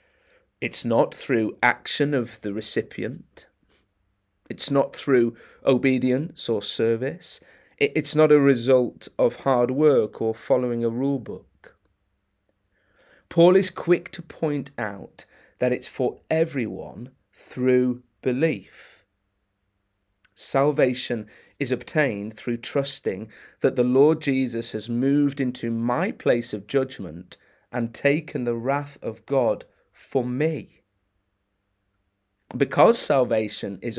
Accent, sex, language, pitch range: British, male, English, 100-140 Hz